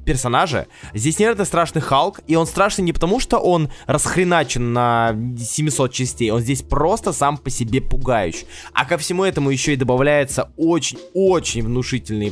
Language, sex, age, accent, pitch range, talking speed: Russian, male, 20-39, native, 110-160 Hz, 155 wpm